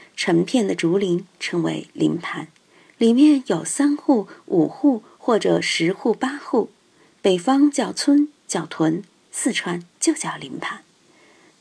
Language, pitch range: Chinese, 175-270 Hz